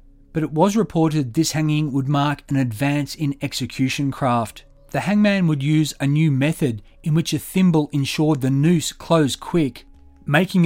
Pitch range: 130-165 Hz